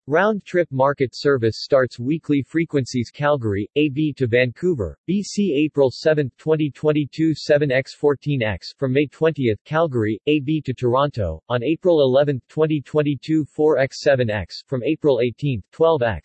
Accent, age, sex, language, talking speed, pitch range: American, 40-59, male, English, 110 wpm, 130-155 Hz